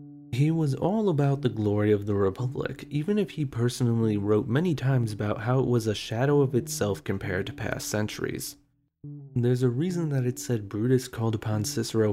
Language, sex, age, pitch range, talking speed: English, male, 20-39, 110-145 Hz, 190 wpm